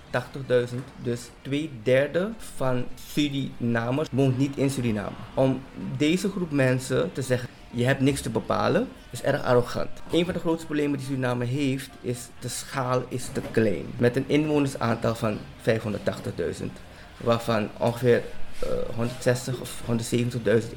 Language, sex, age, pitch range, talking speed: Dutch, male, 20-39, 120-140 Hz, 135 wpm